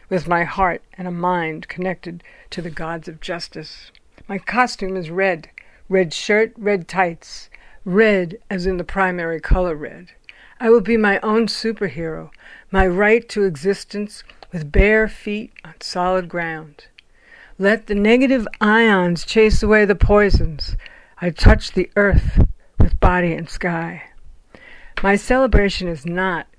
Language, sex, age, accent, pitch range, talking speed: English, female, 60-79, American, 175-210 Hz, 140 wpm